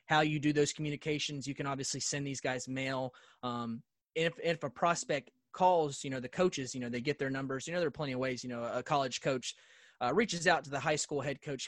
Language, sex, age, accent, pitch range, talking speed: English, male, 30-49, American, 125-150 Hz, 250 wpm